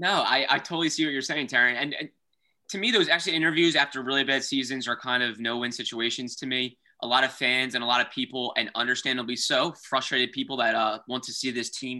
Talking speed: 240 wpm